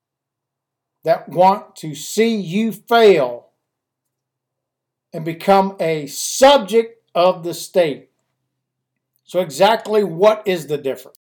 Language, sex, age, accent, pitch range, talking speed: English, male, 60-79, American, 155-220 Hz, 100 wpm